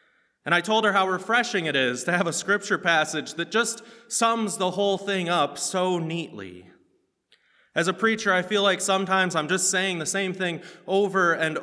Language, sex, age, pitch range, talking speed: English, male, 20-39, 145-190 Hz, 190 wpm